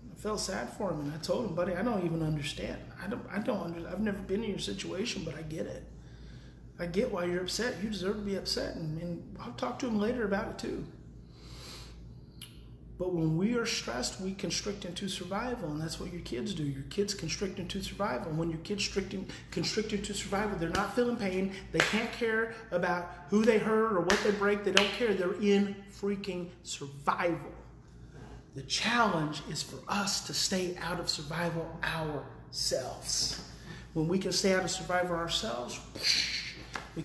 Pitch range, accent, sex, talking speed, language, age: 165-200 Hz, American, male, 190 wpm, English, 30-49